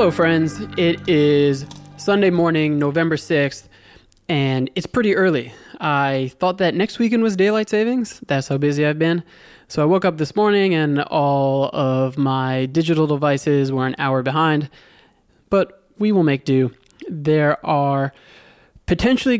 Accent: American